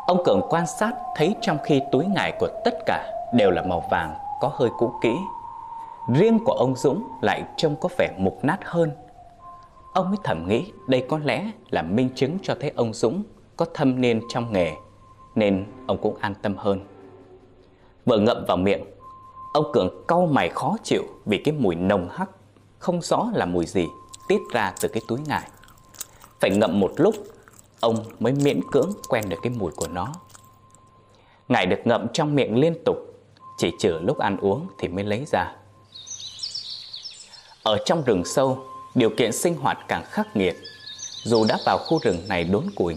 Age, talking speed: 20-39, 185 wpm